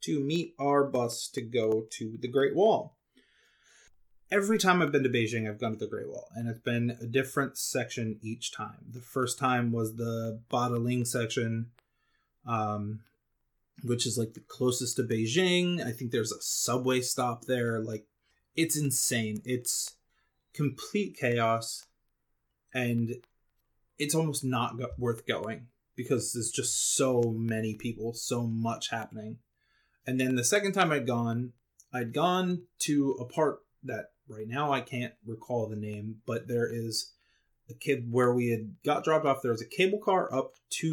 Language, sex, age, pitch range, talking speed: English, male, 20-39, 115-135 Hz, 165 wpm